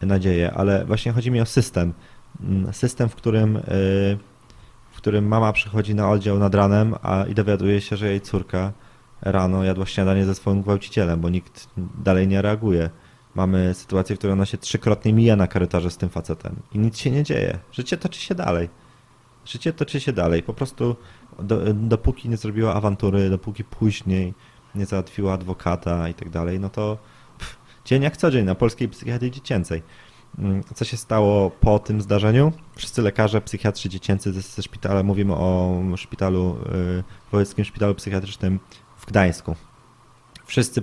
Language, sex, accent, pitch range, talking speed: Polish, male, native, 95-115 Hz, 160 wpm